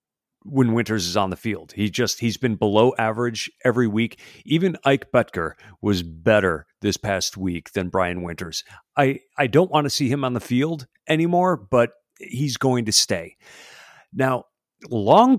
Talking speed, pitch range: 170 wpm, 100-130 Hz